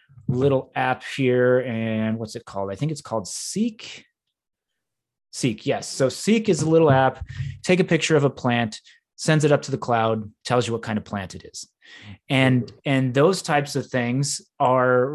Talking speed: 185 wpm